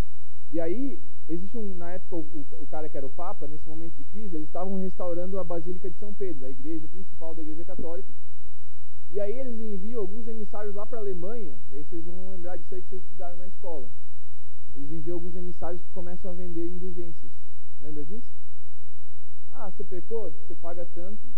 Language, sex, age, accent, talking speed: Portuguese, male, 20-39, Brazilian, 195 wpm